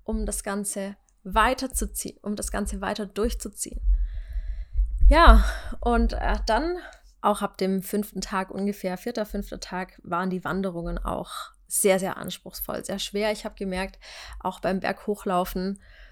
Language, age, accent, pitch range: German, 20-39, German, 190-215 Hz